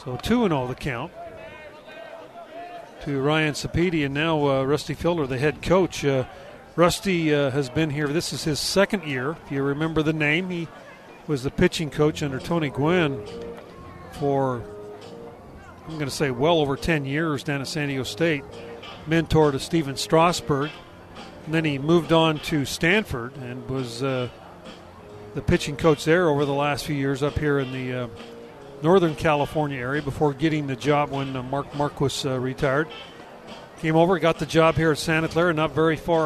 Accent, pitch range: American, 135-165 Hz